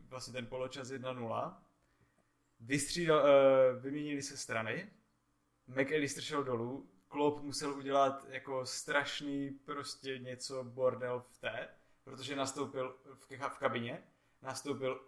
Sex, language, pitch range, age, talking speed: male, Czech, 125-145 Hz, 20-39, 100 wpm